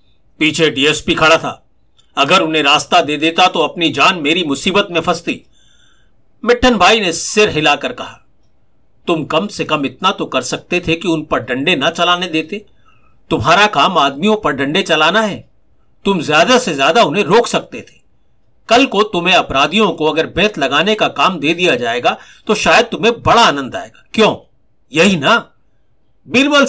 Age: 50-69